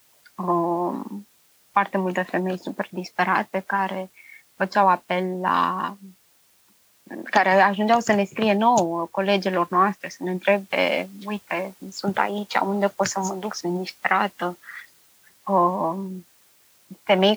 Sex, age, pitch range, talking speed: female, 20-39, 180-210 Hz, 110 wpm